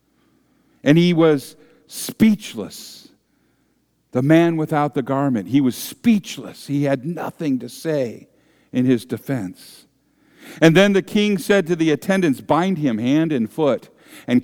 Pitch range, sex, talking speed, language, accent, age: 135-175 Hz, male, 140 wpm, English, American, 50-69